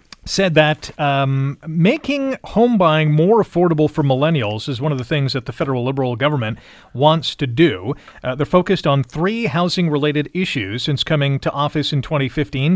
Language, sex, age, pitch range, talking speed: English, male, 40-59, 135-165 Hz, 170 wpm